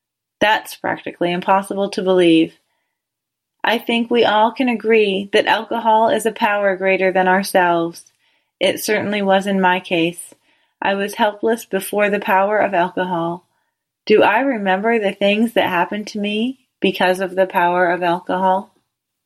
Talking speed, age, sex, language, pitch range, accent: 150 wpm, 30-49, female, English, 185-225 Hz, American